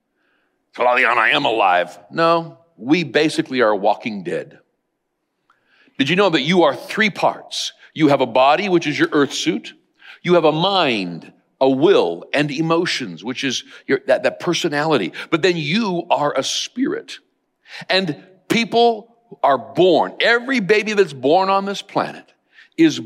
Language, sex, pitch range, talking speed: English, male, 145-215 Hz, 155 wpm